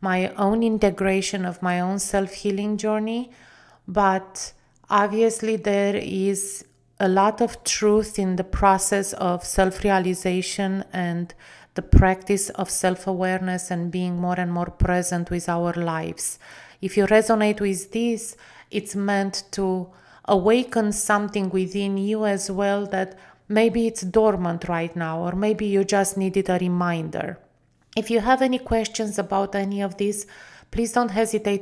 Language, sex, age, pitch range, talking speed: English, female, 30-49, 185-205 Hz, 140 wpm